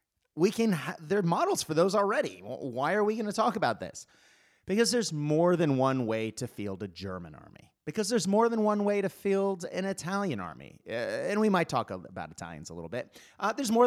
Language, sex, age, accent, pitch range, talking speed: English, male, 30-49, American, 115-180 Hz, 220 wpm